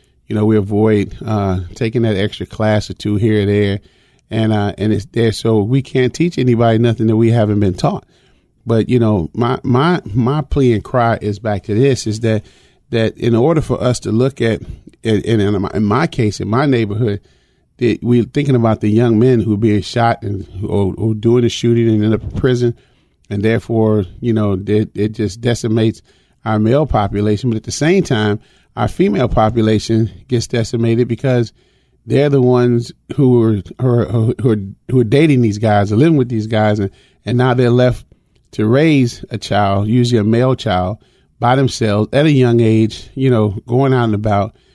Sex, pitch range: male, 105-125 Hz